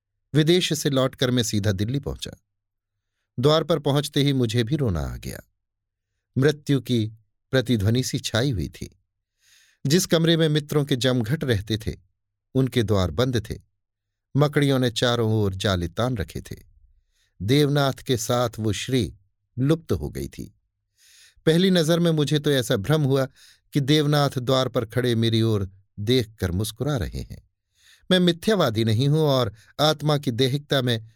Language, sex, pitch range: Hindi, male, 100-140 Hz